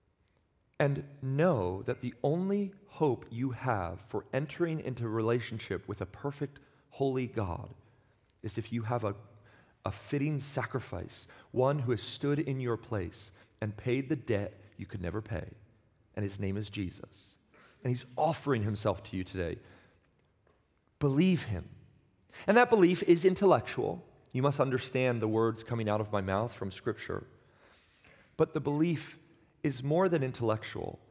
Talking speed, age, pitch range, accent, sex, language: 150 wpm, 40-59, 100-130 Hz, American, male, English